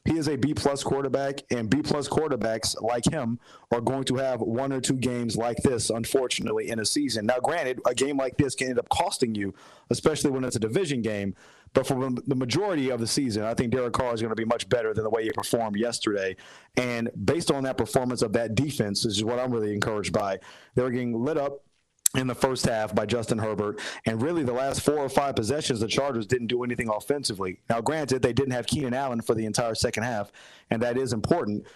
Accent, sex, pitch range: American, male, 115-135 Hz